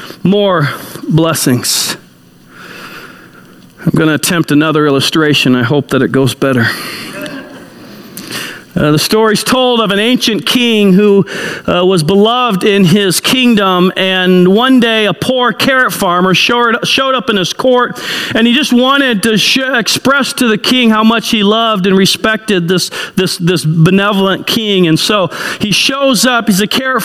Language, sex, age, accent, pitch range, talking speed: English, male, 40-59, American, 190-245 Hz, 155 wpm